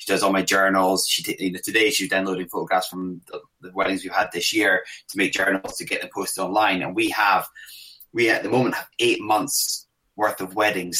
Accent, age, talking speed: British, 20-39, 220 wpm